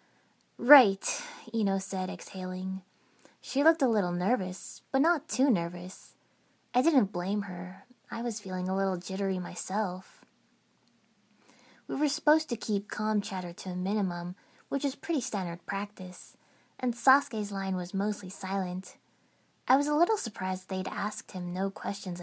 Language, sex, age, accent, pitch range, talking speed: English, female, 20-39, American, 185-245 Hz, 150 wpm